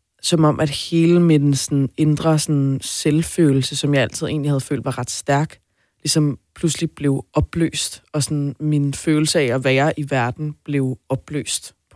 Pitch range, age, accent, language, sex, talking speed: 135-160 Hz, 20-39, native, Danish, female, 170 wpm